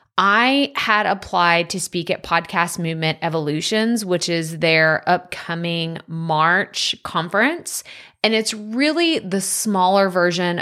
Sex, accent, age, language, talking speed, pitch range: female, American, 20-39, English, 120 wpm, 165-205 Hz